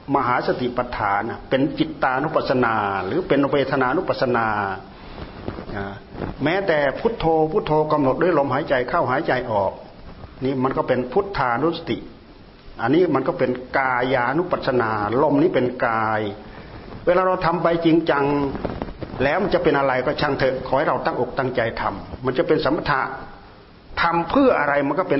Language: Thai